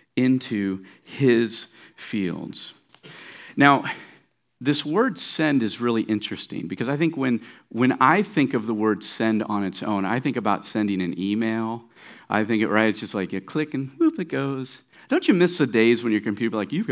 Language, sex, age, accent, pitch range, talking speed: English, male, 50-69, American, 115-175 Hz, 190 wpm